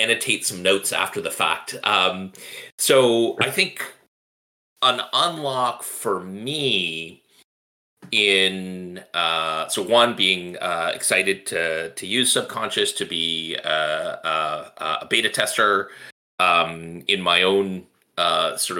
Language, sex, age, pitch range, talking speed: English, male, 30-49, 90-135 Hz, 120 wpm